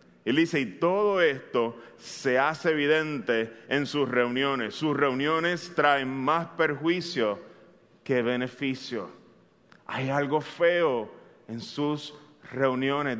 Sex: male